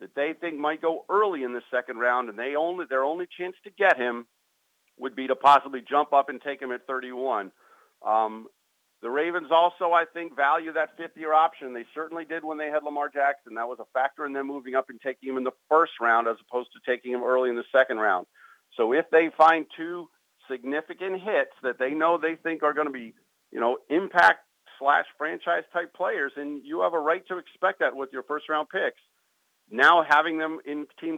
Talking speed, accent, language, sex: 210 wpm, American, English, male